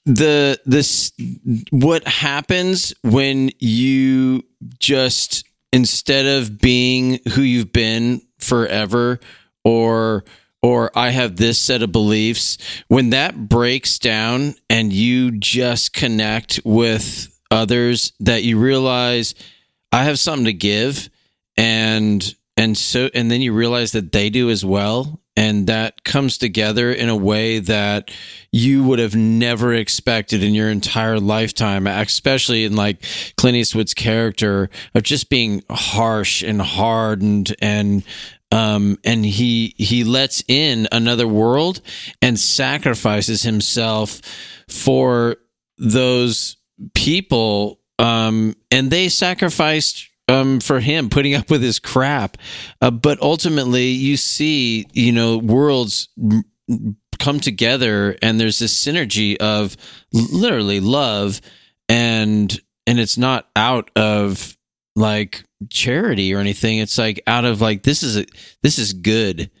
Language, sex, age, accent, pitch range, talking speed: English, male, 40-59, American, 105-130 Hz, 125 wpm